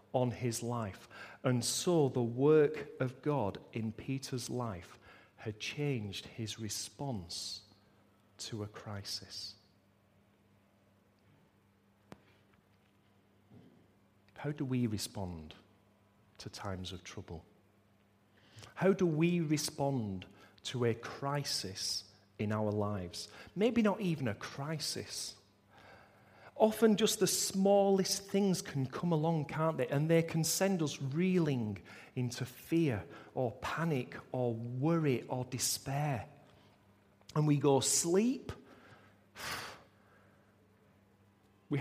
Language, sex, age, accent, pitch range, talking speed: English, male, 40-59, British, 100-145 Hz, 100 wpm